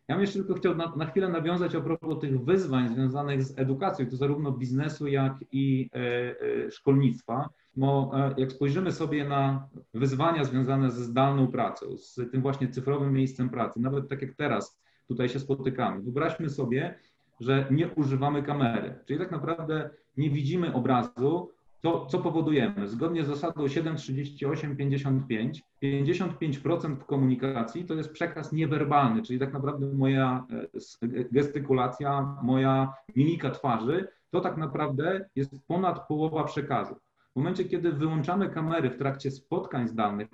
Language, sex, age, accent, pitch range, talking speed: Polish, male, 40-59, native, 130-160 Hz, 140 wpm